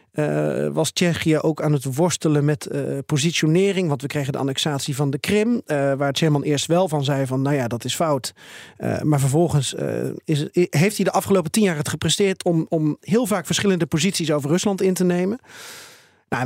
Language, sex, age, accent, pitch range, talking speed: Dutch, male, 40-59, Dutch, 145-185 Hz, 205 wpm